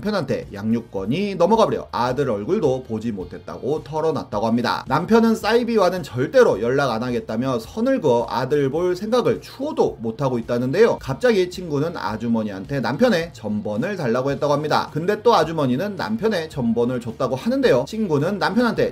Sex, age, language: male, 30-49, Korean